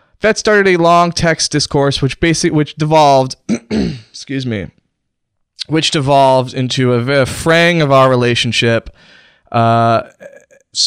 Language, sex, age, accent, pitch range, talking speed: English, male, 20-39, American, 115-150 Hz, 120 wpm